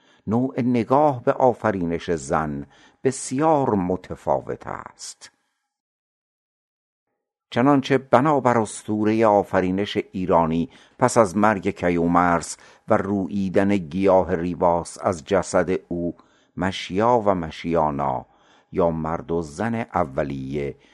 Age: 50-69